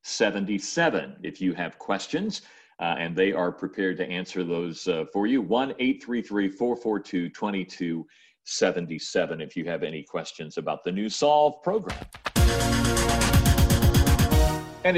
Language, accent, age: English, American, 50-69